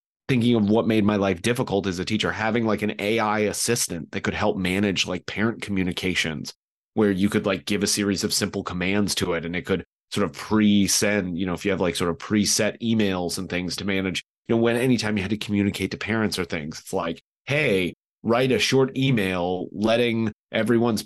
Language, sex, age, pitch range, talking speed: English, male, 30-49, 100-120 Hz, 215 wpm